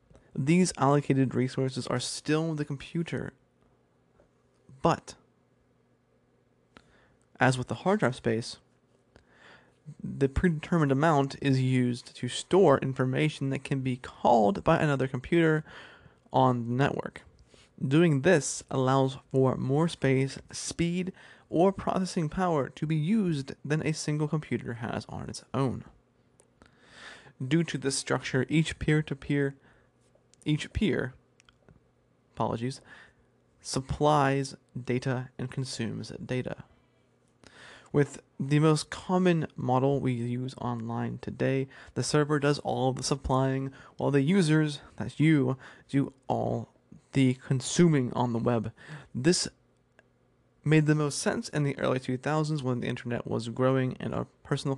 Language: English